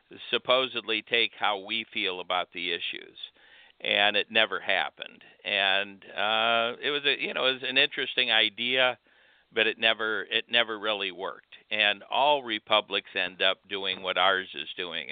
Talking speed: 165 wpm